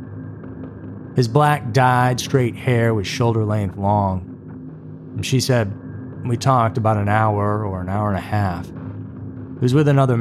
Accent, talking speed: American, 145 wpm